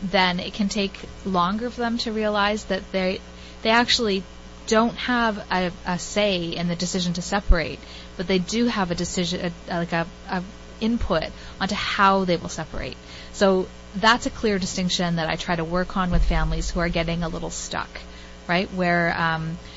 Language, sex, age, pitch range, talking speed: English, female, 30-49, 170-195 Hz, 185 wpm